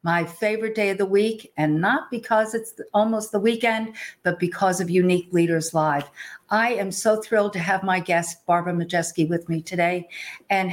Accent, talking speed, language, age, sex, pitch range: American, 185 wpm, English, 50-69, female, 180-225 Hz